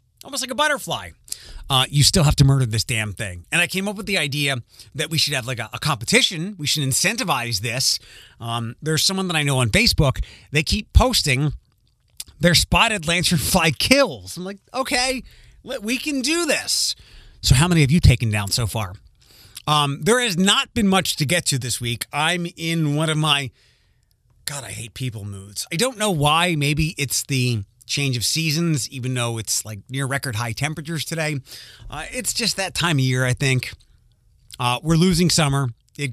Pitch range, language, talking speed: 120-175 Hz, English, 195 wpm